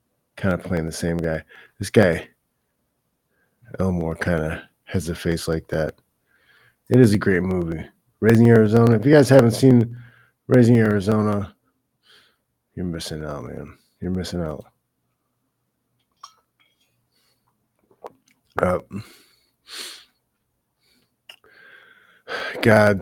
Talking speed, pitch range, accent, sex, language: 100 wpm, 95-120 Hz, American, male, English